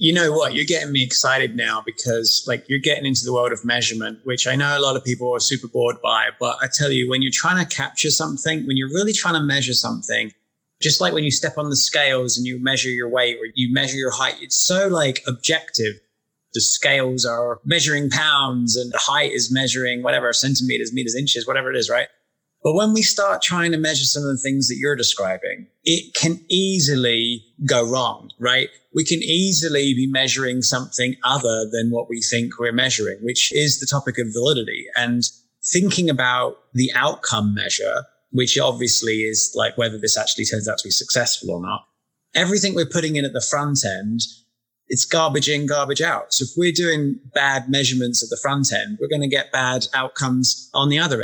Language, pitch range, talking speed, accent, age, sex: English, 120-150 Hz, 205 wpm, British, 20-39, male